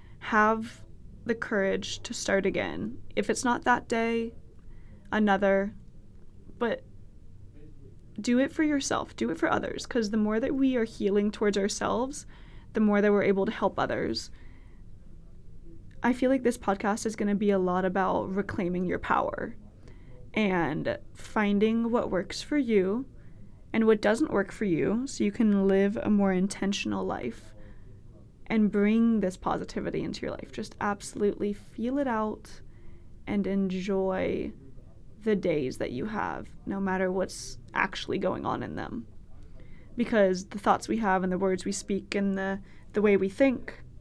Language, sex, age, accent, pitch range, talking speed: English, female, 20-39, American, 190-245 Hz, 160 wpm